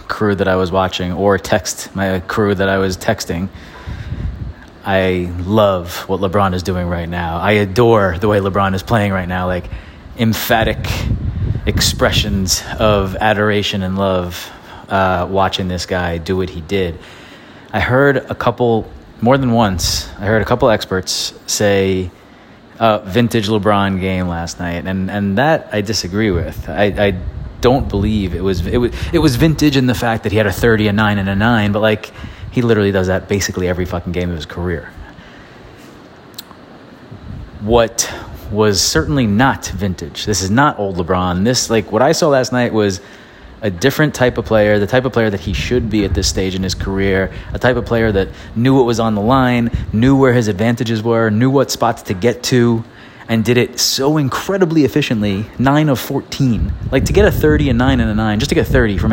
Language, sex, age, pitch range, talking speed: English, male, 30-49, 95-120 Hz, 195 wpm